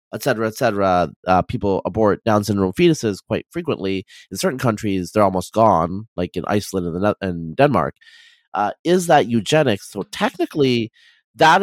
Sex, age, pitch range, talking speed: male, 30-49, 105-145 Hz, 165 wpm